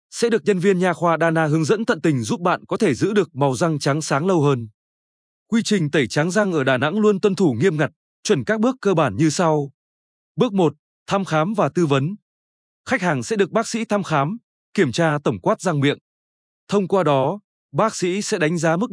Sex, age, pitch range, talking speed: male, 20-39, 140-200 Hz, 230 wpm